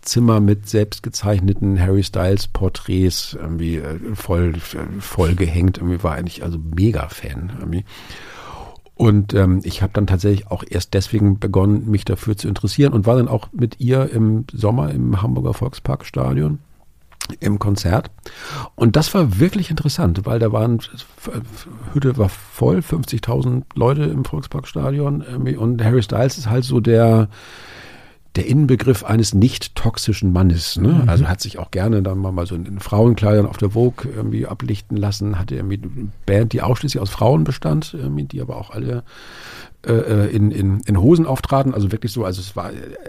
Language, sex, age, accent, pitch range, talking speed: German, male, 50-69, German, 95-120 Hz, 155 wpm